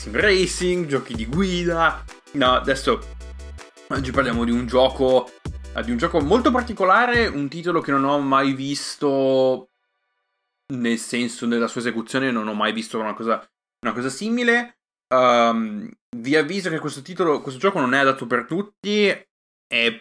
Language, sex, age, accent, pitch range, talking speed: Italian, male, 20-39, native, 120-175 Hz, 155 wpm